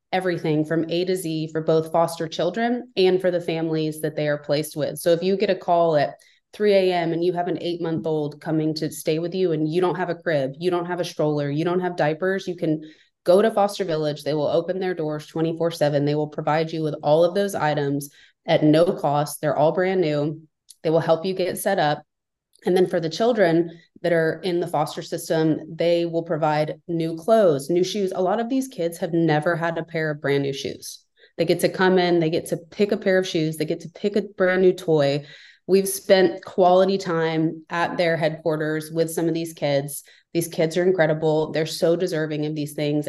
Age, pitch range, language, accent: 20-39, 155-180 Hz, English, American